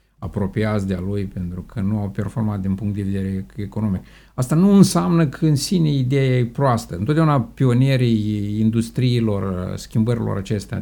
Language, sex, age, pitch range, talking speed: Romanian, male, 50-69, 95-120 Hz, 155 wpm